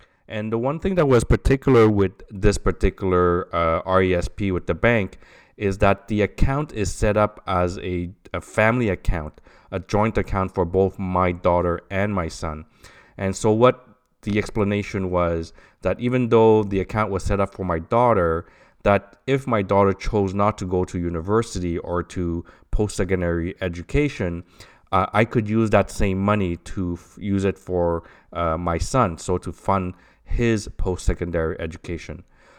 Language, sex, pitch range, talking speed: English, male, 90-105 Hz, 165 wpm